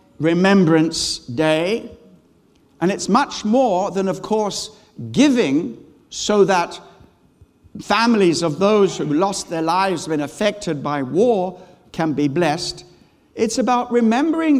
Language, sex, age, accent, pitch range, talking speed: English, male, 60-79, British, 150-235 Hz, 120 wpm